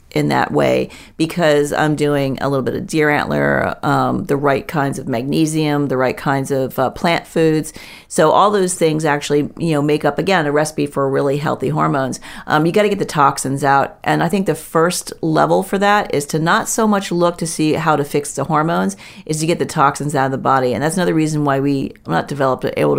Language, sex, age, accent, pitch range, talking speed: English, female, 40-59, American, 145-165 Hz, 225 wpm